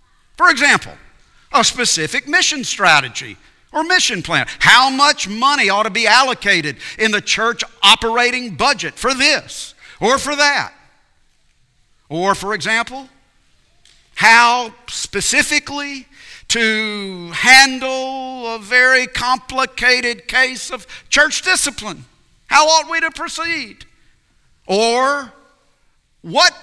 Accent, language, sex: American, English, male